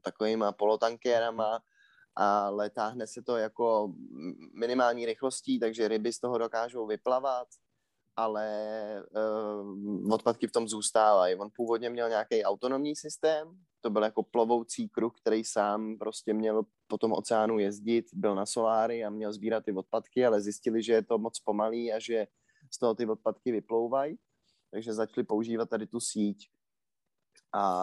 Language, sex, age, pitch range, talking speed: Czech, male, 20-39, 105-115 Hz, 150 wpm